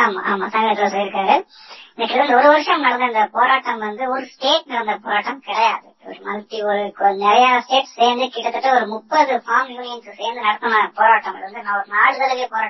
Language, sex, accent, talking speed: Tamil, male, native, 130 wpm